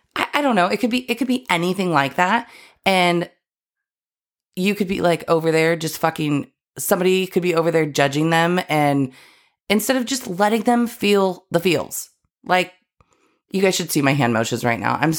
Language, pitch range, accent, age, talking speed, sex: English, 145-190 Hz, American, 30-49, 195 wpm, female